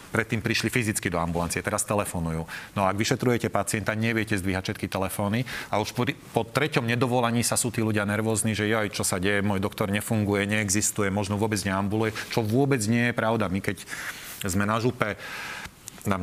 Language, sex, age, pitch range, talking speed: Slovak, male, 30-49, 100-115 Hz, 185 wpm